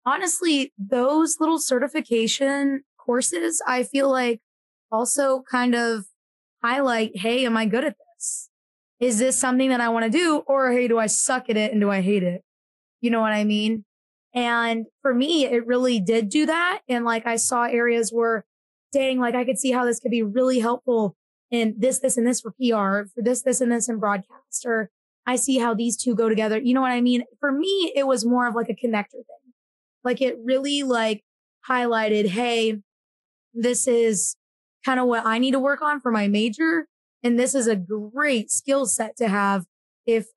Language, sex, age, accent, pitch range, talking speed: English, female, 20-39, American, 220-260 Hz, 200 wpm